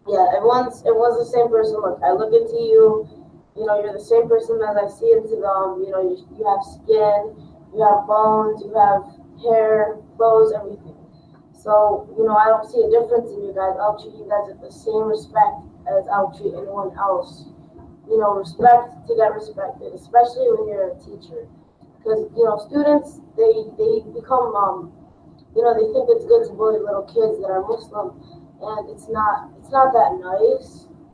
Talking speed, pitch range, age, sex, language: 195 wpm, 185-240 Hz, 20-39, female, English